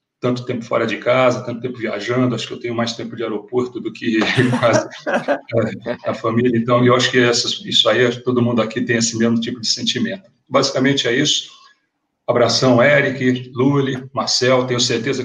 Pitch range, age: 120-135 Hz, 40-59